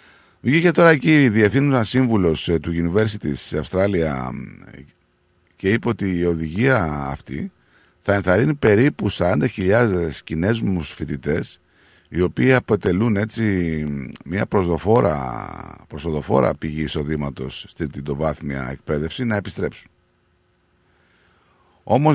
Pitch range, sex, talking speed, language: 80-105 Hz, male, 105 wpm, Greek